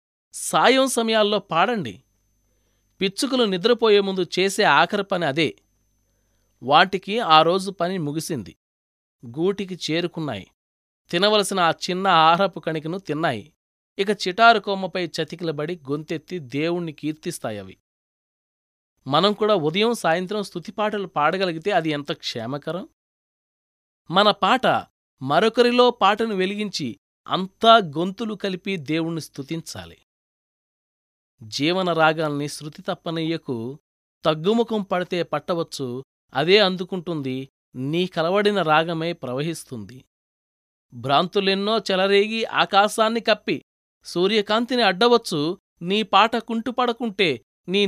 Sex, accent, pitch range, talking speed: male, native, 145-210 Hz, 85 wpm